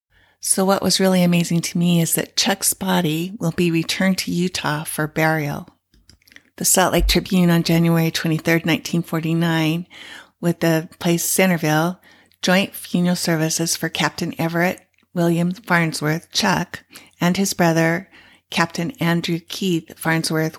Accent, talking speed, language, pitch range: American, 135 wpm, English, 160-175 Hz